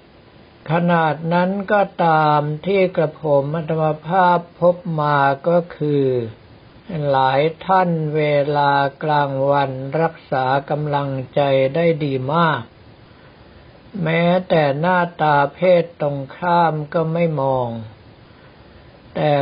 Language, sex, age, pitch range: Thai, male, 60-79, 140-170 Hz